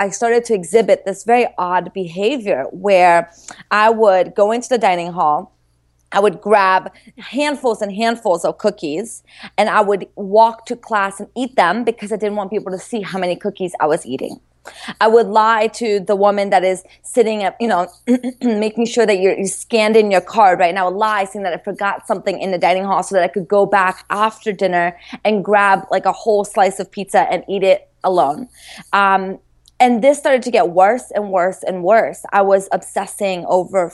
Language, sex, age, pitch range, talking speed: English, female, 20-39, 190-230 Hz, 205 wpm